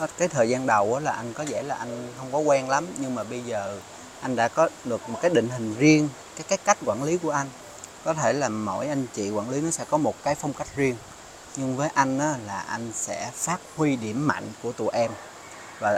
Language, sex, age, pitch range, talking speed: Vietnamese, male, 30-49, 115-150 Hz, 240 wpm